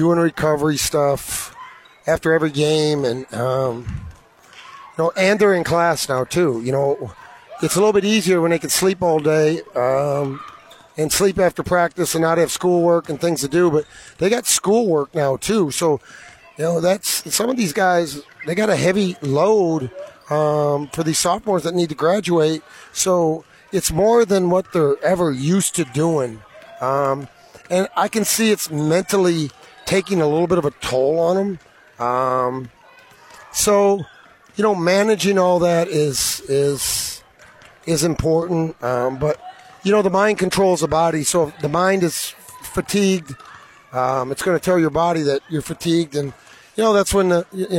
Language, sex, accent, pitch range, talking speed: English, male, American, 145-180 Hz, 175 wpm